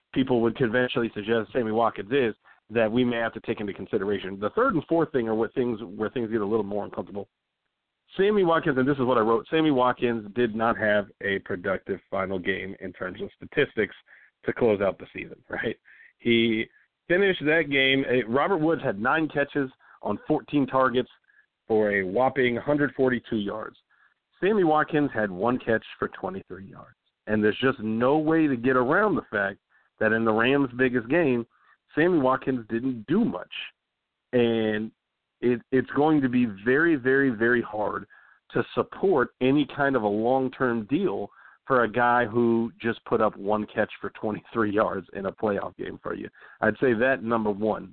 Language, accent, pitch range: English, American, 110-135 Hz